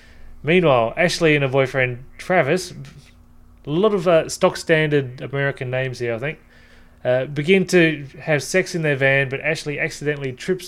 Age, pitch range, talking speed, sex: 20-39, 125-160 Hz, 165 wpm, male